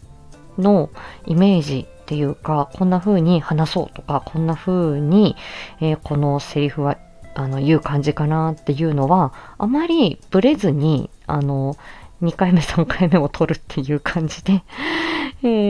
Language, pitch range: Japanese, 145-185 Hz